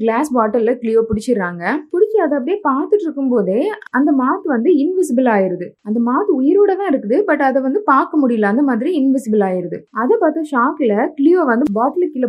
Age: 20-39